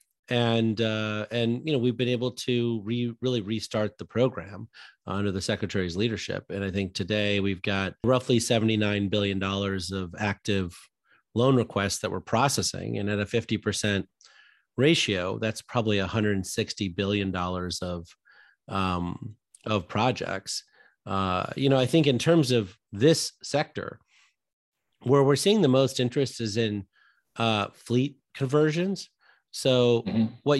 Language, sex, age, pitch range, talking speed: English, male, 30-49, 100-125 Hz, 140 wpm